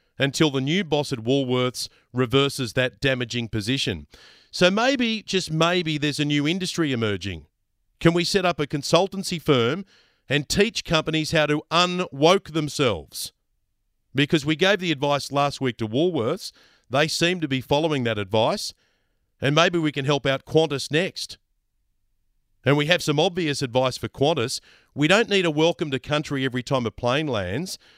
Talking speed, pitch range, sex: 165 wpm, 120-160 Hz, male